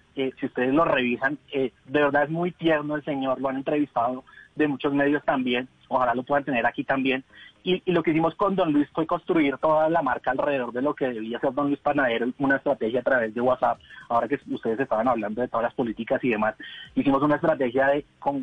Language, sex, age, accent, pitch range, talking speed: Spanish, male, 30-49, Colombian, 130-160 Hz, 225 wpm